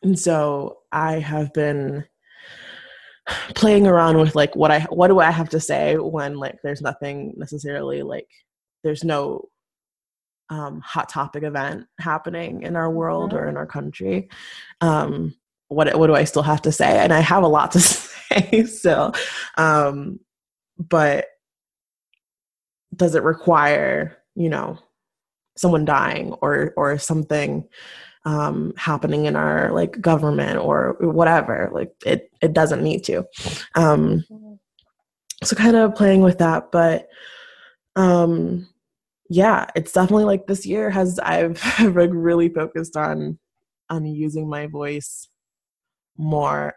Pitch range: 145-175 Hz